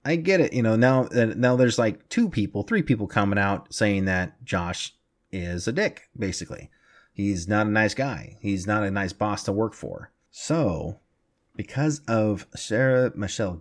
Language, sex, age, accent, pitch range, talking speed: English, male, 30-49, American, 95-120 Hz, 180 wpm